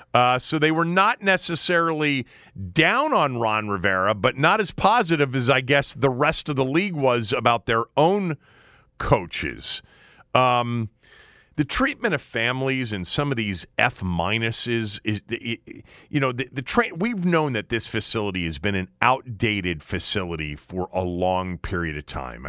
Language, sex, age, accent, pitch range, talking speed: English, male, 40-59, American, 95-135 Hz, 155 wpm